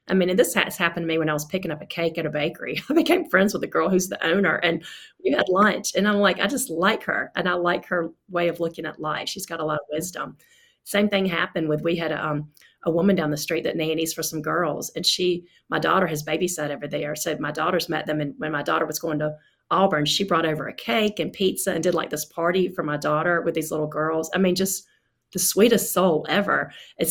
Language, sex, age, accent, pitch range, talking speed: English, female, 30-49, American, 155-195 Hz, 265 wpm